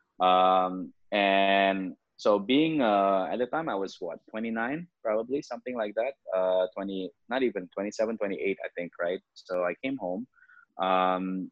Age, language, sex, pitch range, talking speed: 20-39, English, male, 90-105 Hz, 155 wpm